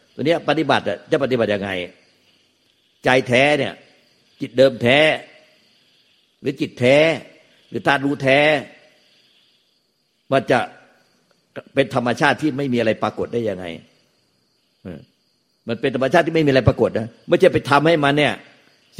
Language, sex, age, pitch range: Thai, male, 60-79, 115-145 Hz